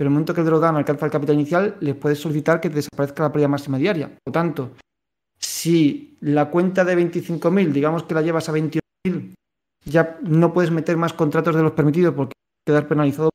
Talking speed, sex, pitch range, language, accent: 220 wpm, male, 150-180 Hz, Spanish, Spanish